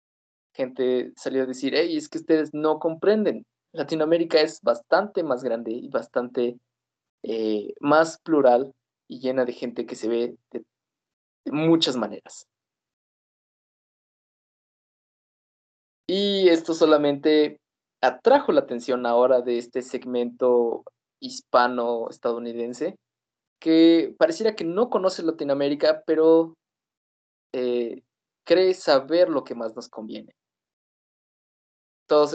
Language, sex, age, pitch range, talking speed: Spanish, male, 20-39, 120-160 Hz, 110 wpm